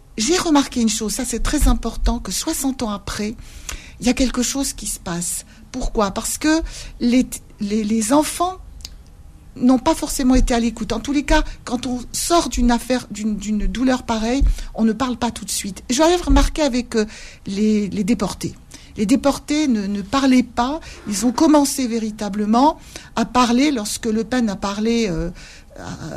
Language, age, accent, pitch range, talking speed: French, 50-69, French, 200-255 Hz, 175 wpm